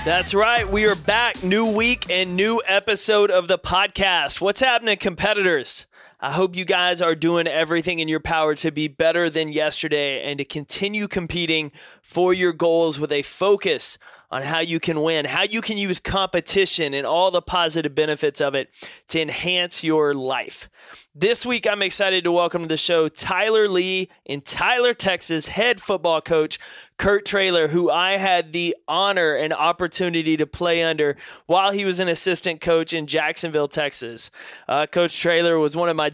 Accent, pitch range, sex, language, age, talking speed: American, 160-190 Hz, male, English, 30-49, 180 wpm